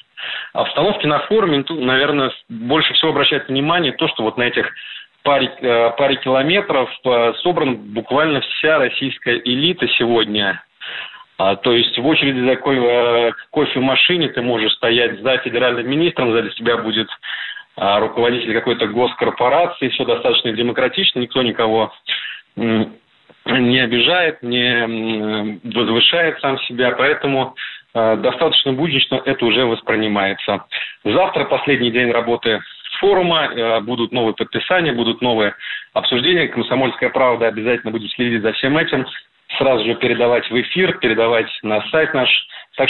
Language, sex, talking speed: Russian, male, 130 wpm